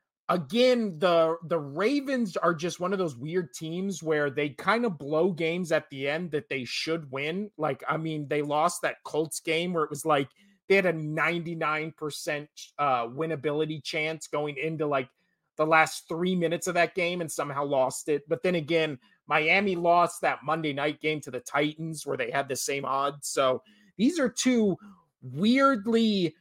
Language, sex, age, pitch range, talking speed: English, male, 30-49, 150-180 Hz, 180 wpm